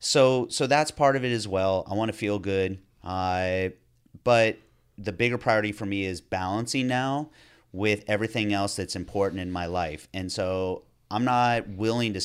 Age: 30-49